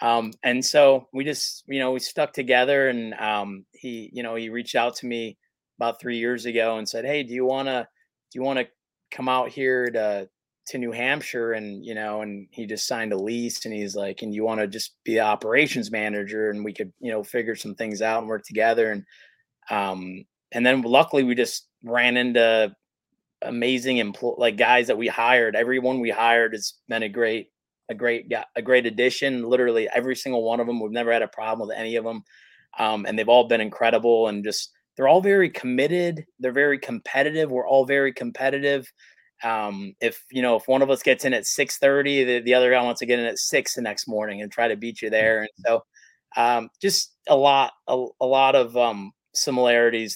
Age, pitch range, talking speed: 20-39, 110-130 Hz, 215 wpm